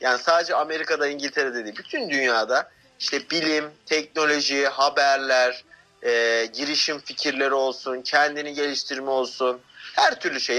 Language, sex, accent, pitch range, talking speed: Turkish, male, native, 145-215 Hz, 120 wpm